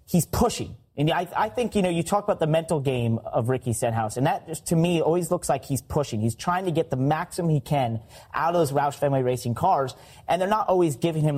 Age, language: 30-49, English